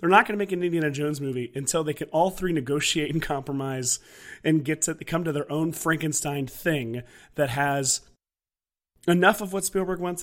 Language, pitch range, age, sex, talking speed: English, 135-180 Hz, 30-49, male, 195 wpm